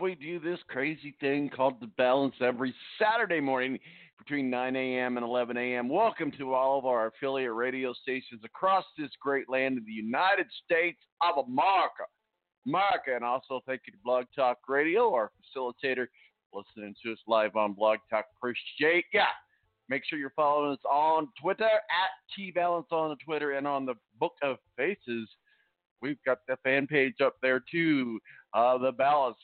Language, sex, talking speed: English, male, 170 wpm